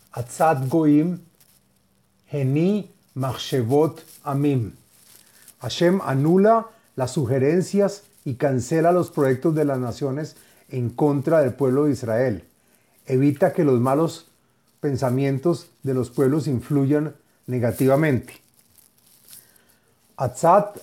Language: Spanish